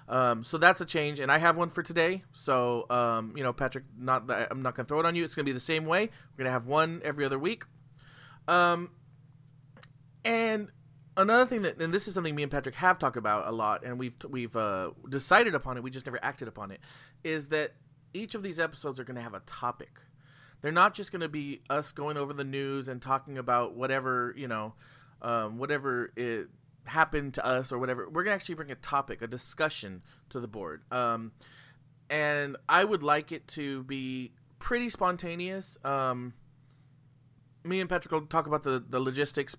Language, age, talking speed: English, 30-49, 210 wpm